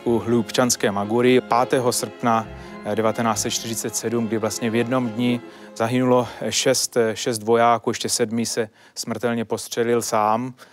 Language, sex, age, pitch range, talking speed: Czech, male, 30-49, 115-130 Hz, 115 wpm